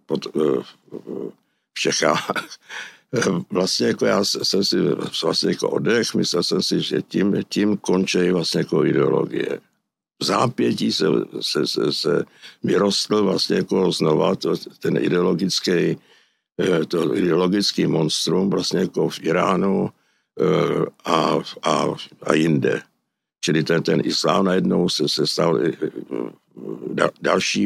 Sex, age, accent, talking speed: male, 60-79, native, 115 wpm